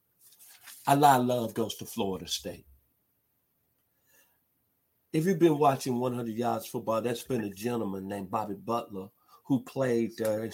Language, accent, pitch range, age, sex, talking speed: English, American, 105-130 Hz, 50-69, male, 140 wpm